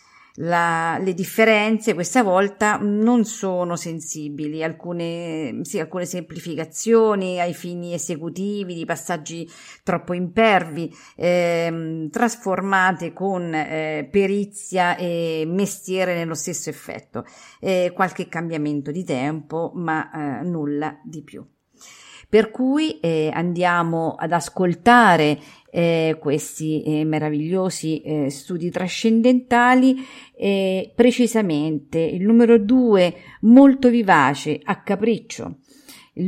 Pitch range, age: 160-215 Hz, 50-69